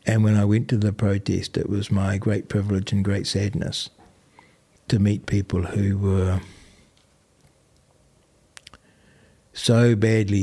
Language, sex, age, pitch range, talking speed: English, male, 60-79, 95-105 Hz, 125 wpm